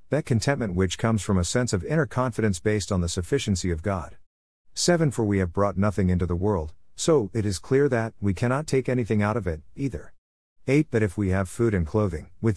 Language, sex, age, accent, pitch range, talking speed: English, male, 50-69, American, 90-125 Hz, 225 wpm